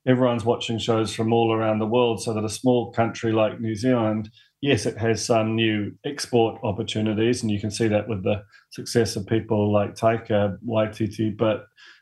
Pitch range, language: 110-120 Hz, English